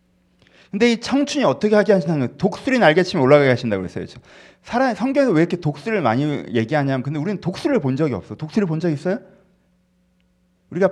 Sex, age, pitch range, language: male, 30-49, 140-205 Hz, Korean